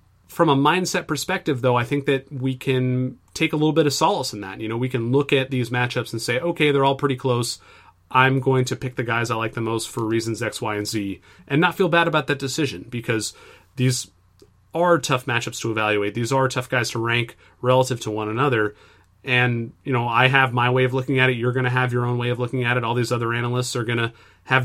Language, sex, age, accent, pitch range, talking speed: English, male, 30-49, American, 115-135 Hz, 250 wpm